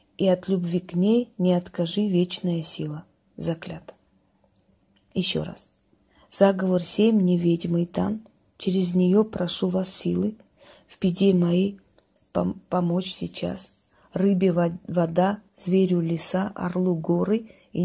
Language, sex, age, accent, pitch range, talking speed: Russian, female, 30-49, native, 165-195 Hz, 115 wpm